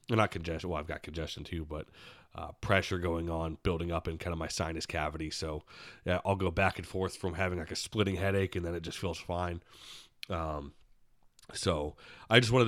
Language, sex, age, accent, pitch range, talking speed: English, male, 30-49, American, 85-95 Hz, 205 wpm